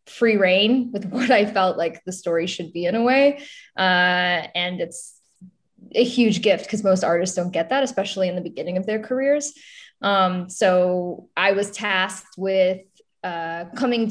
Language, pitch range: English, 185-220 Hz